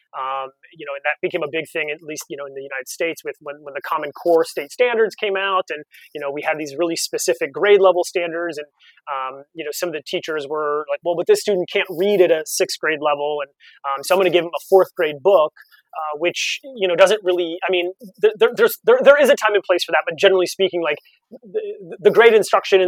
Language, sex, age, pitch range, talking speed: English, male, 30-49, 150-195 Hz, 255 wpm